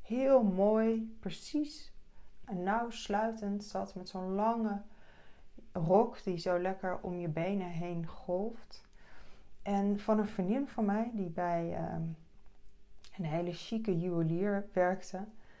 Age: 20-39